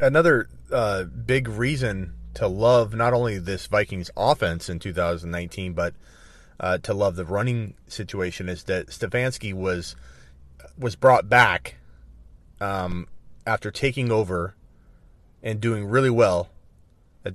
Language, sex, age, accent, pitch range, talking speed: English, male, 30-49, American, 90-115 Hz, 125 wpm